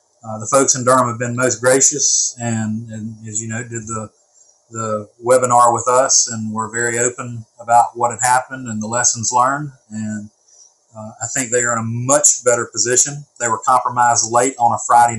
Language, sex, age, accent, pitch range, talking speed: English, male, 30-49, American, 115-130 Hz, 200 wpm